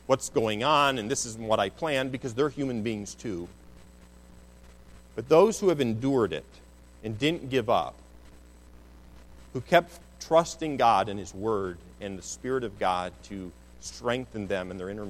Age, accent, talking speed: 40-59, American, 165 wpm